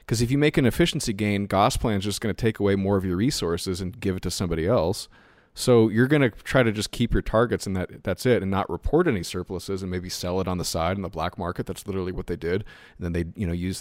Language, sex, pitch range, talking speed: English, male, 85-105 Hz, 285 wpm